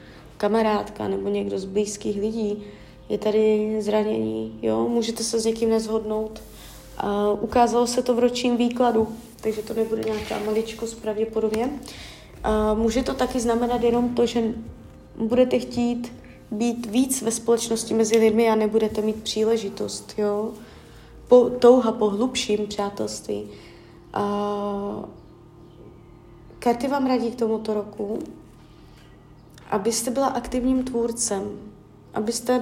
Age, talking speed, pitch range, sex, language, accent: 20-39, 110 wpm, 210-240 Hz, female, Czech, native